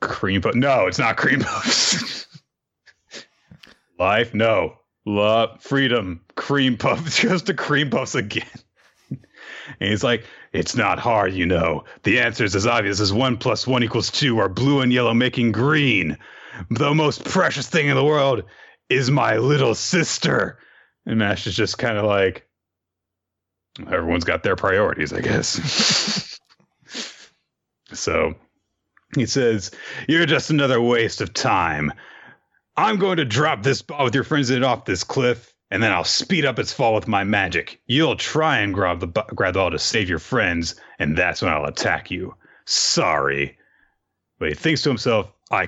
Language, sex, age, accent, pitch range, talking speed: English, male, 30-49, American, 100-135 Hz, 165 wpm